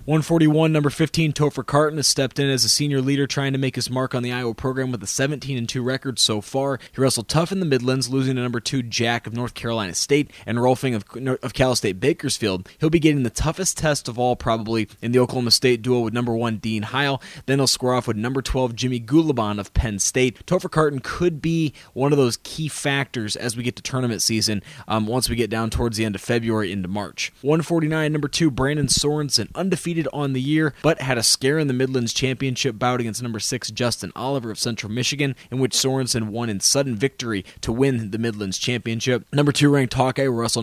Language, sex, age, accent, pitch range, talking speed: English, male, 20-39, American, 115-140 Hz, 225 wpm